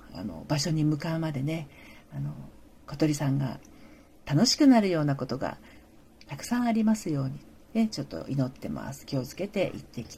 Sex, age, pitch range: female, 40-59, 140-180 Hz